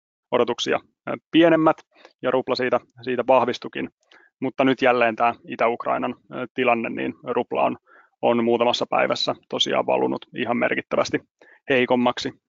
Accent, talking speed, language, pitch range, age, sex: native, 115 wpm, Finnish, 120-130 Hz, 30-49, male